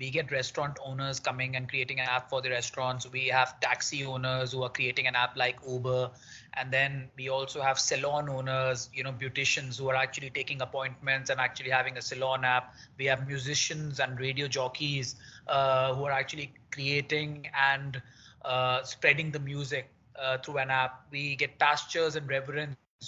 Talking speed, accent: 180 wpm, Indian